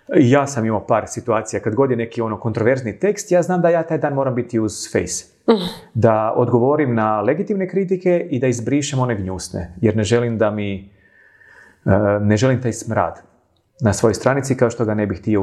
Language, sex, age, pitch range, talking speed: English, male, 30-49, 105-145 Hz, 195 wpm